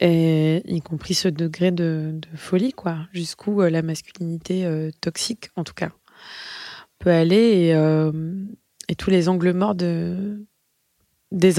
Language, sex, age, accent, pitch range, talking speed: French, female, 20-39, French, 165-190 Hz, 145 wpm